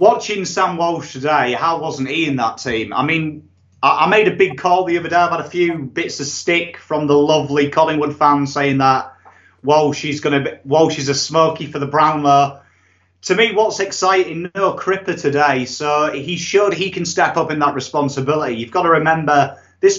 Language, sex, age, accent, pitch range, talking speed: English, male, 30-49, British, 130-165 Hz, 205 wpm